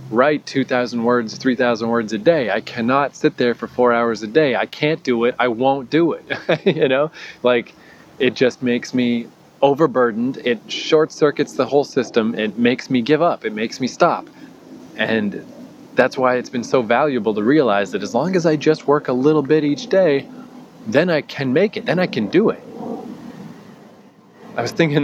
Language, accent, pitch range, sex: English, American, 115-145 Hz, male